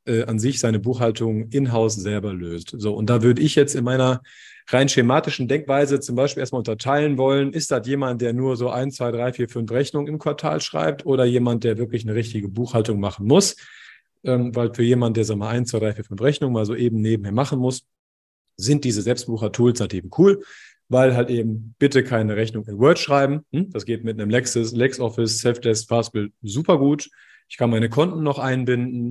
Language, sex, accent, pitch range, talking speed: German, male, German, 110-135 Hz, 200 wpm